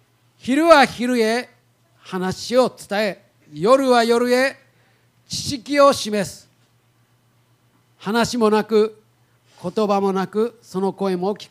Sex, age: male, 40-59